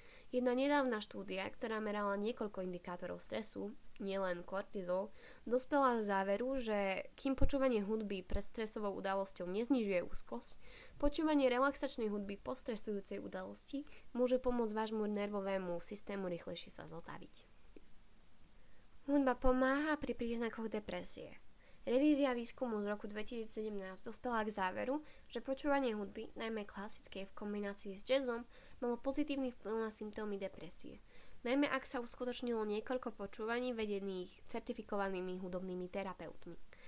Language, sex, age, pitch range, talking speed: Slovak, female, 10-29, 195-250 Hz, 120 wpm